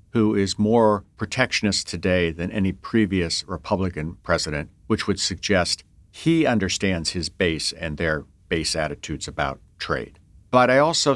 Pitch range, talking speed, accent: 90-120 Hz, 140 wpm, American